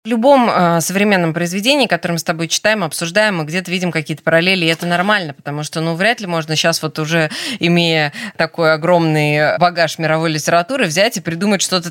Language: Russian